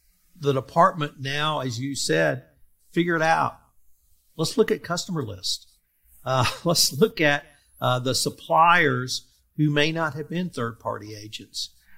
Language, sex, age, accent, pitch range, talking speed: English, male, 50-69, American, 125-150 Hz, 140 wpm